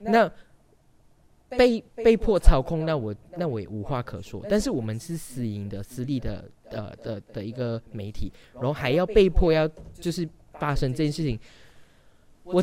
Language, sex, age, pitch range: Chinese, male, 20-39, 115-165 Hz